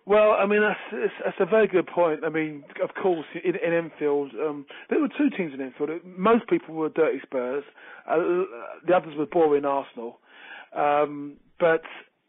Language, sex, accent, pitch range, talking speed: English, male, British, 145-185 Hz, 175 wpm